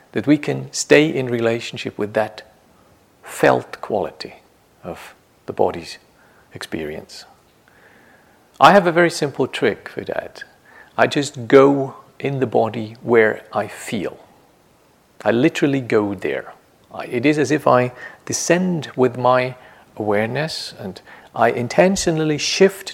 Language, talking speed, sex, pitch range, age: English, 125 wpm, male, 115-145 Hz, 50-69